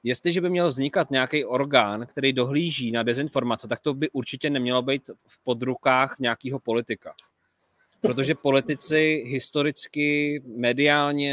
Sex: male